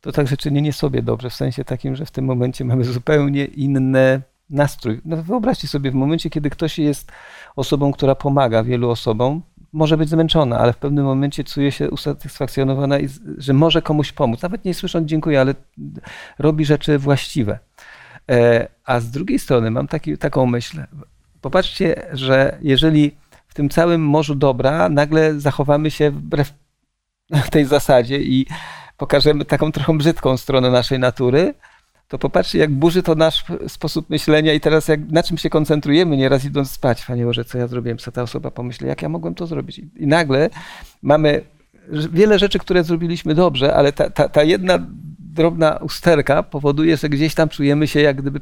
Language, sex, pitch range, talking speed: Polish, male, 135-155 Hz, 170 wpm